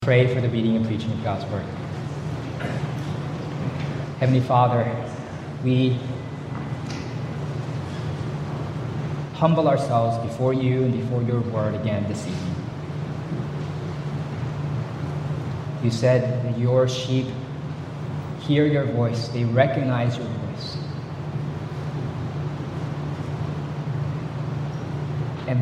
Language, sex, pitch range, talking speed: English, male, 120-145 Hz, 85 wpm